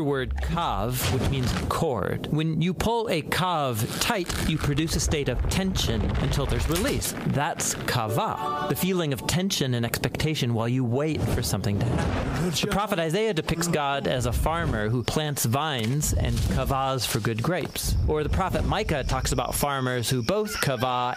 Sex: male